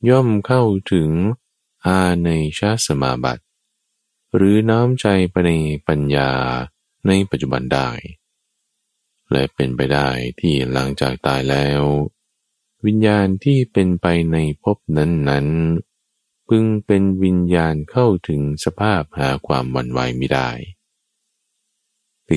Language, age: Thai, 20-39